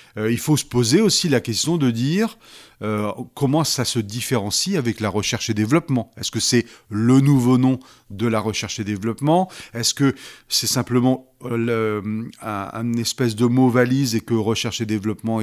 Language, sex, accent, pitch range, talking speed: French, male, French, 110-135 Hz, 185 wpm